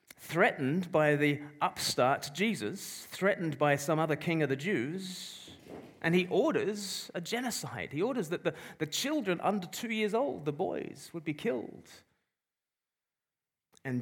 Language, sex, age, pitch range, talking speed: English, male, 30-49, 115-165 Hz, 145 wpm